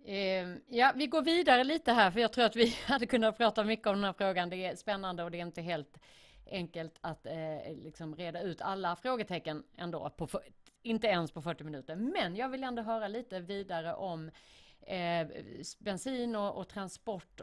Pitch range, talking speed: 165-220 Hz, 190 wpm